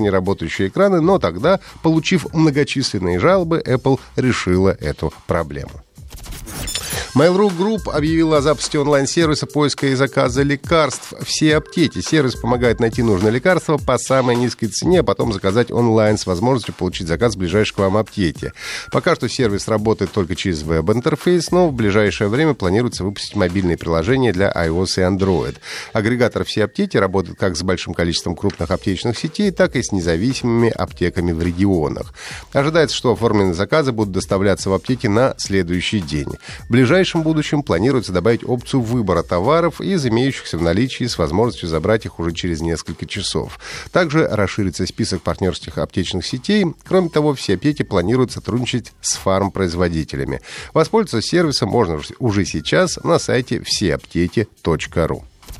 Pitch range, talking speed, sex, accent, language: 90-135 Hz, 150 wpm, male, native, Russian